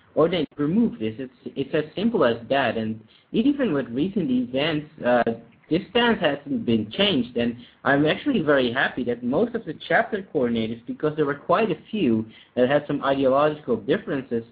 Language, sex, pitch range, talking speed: English, male, 125-170 Hz, 180 wpm